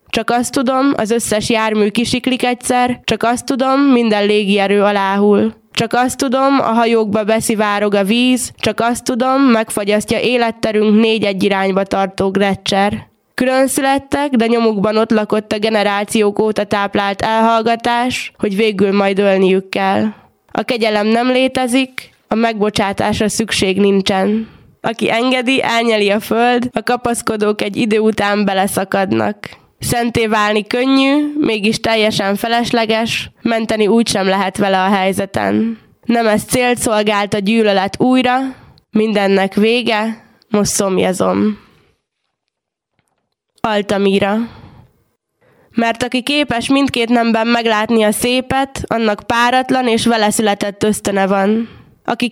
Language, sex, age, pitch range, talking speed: Hungarian, female, 20-39, 205-240 Hz, 125 wpm